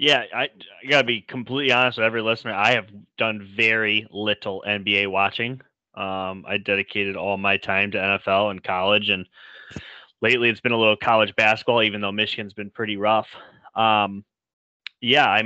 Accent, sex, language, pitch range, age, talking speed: American, male, English, 100-120 Hz, 20-39, 170 wpm